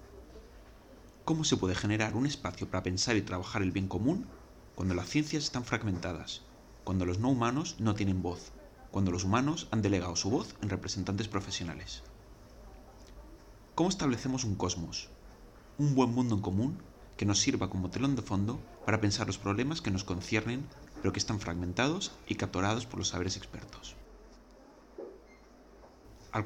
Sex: male